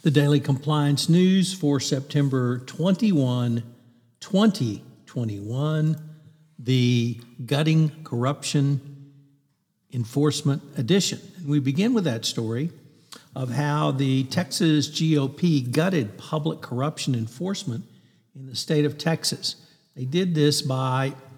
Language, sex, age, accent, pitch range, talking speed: English, male, 60-79, American, 125-155 Hz, 100 wpm